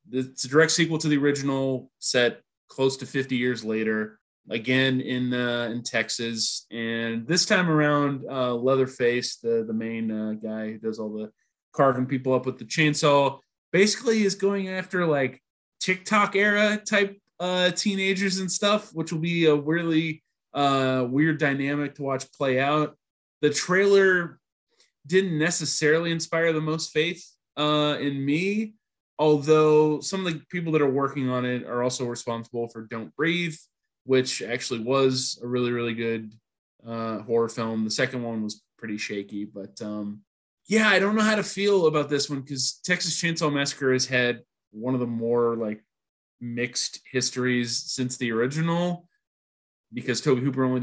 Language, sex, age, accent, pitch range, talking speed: English, male, 20-39, American, 120-160 Hz, 165 wpm